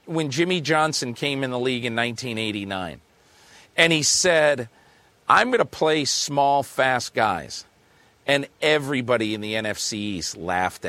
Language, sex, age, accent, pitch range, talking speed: English, male, 40-59, American, 125-160 Hz, 145 wpm